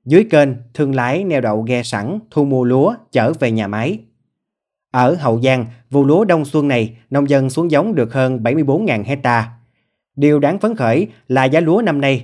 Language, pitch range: Vietnamese, 120-150 Hz